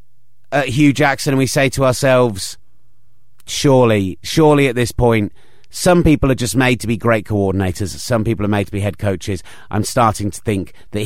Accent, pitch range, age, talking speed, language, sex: British, 100-130 Hz, 30-49, 190 wpm, English, male